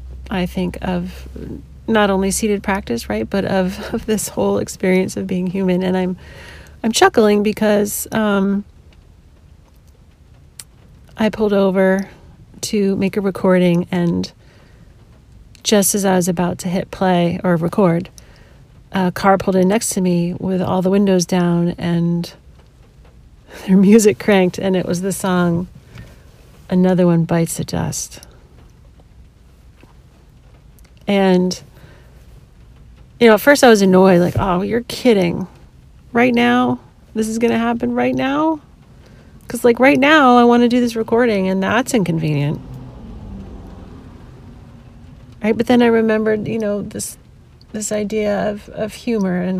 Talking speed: 140 wpm